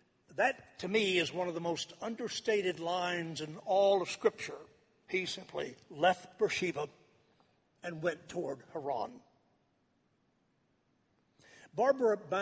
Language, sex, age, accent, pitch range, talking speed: English, male, 60-79, American, 175-215 Hz, 110 wpm